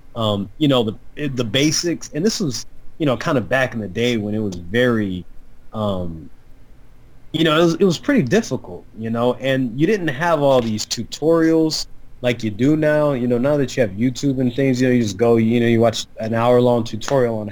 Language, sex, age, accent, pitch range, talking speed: English, male, 20-39, American, 110-135 Hz, 225 wpm